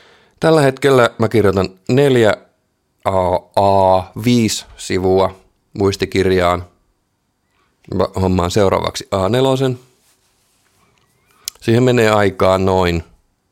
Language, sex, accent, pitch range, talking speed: Finnish, male, native, 95-125 Hz, 60 wpm